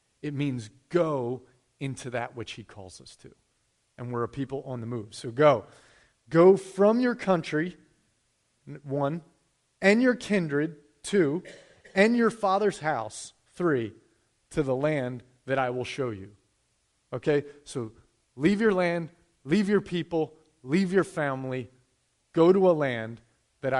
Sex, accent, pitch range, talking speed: male, American, 130-160 Hz, 145 wpm